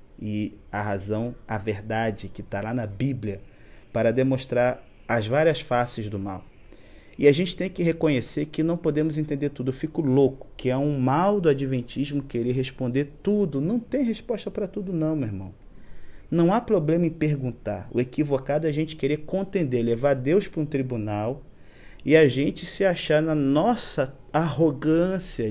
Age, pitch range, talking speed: 30-49, 110-150 Hz, 170 wpm